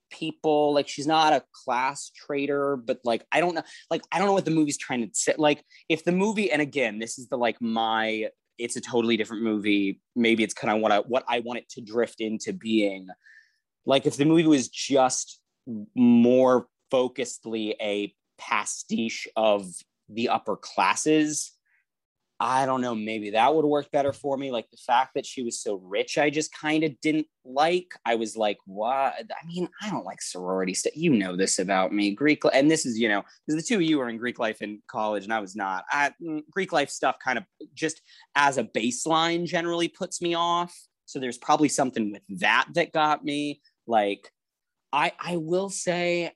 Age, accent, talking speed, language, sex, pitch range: 30-49, American, 205 wpm, English, male, 115-155 Hz